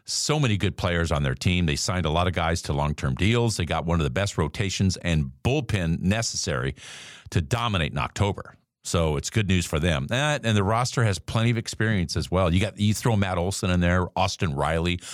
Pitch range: 90-125 Hz